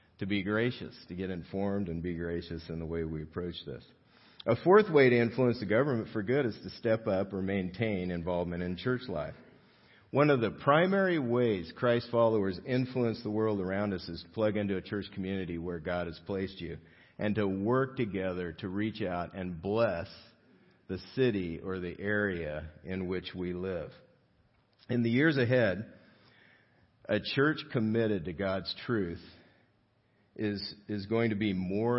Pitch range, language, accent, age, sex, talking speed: 90-115 Hz, English, American, 50-69, male, 170 wpm